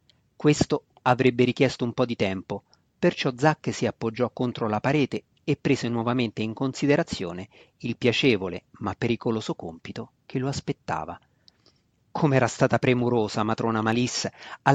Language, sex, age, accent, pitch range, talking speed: Italian, male, 40-59, native, 115-145 Hz, 135 wpm